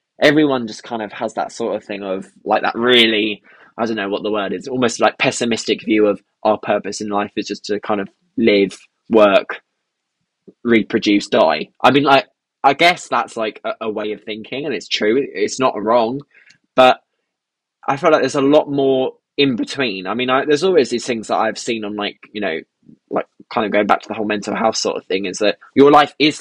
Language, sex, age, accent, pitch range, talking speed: English, male, 10-29, British, 110-135 Hz, 225 wpm